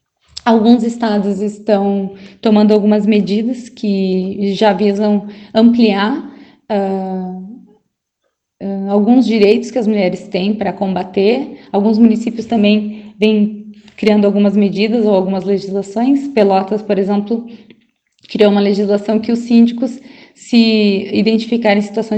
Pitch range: 200-230 Hz